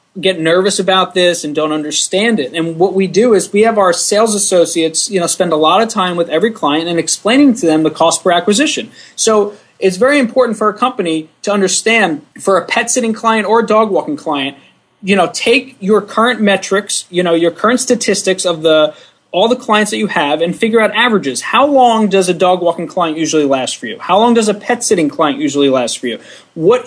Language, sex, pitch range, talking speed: English, male, 165-215 Hz, 225 wpm